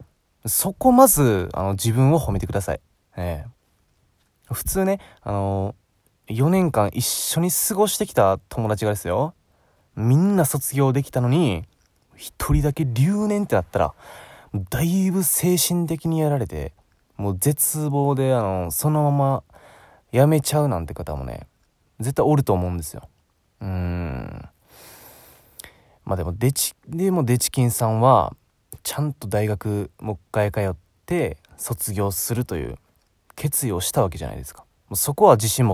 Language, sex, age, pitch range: Japanese, male, 20-39, 95-150 Hz